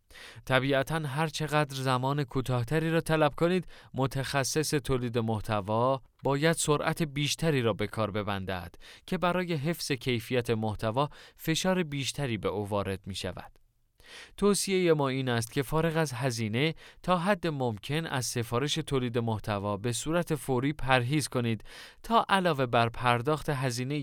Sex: male